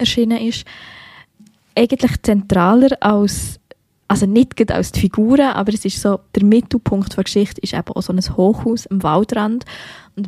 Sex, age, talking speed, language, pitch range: female, 20-39, 160 wpm, German, 190-220 Hz